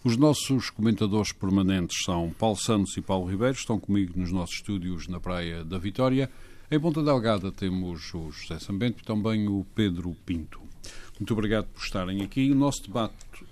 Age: 50-69